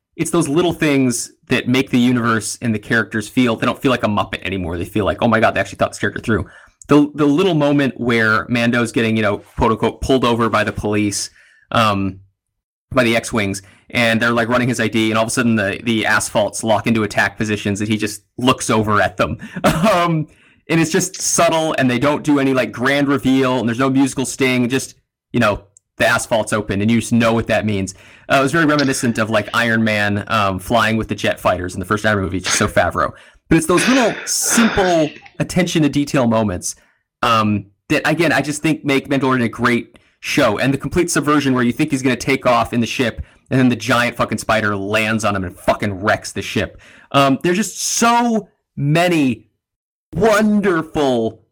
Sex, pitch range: male, 110-140 Hz